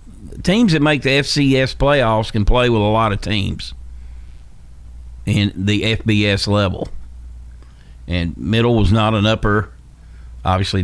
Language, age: English, 50-69